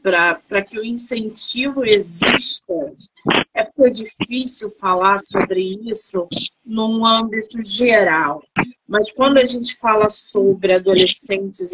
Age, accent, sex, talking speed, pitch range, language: 40-59, Brazilian, female, 110 wpm, 210-290 Hz, Portuguese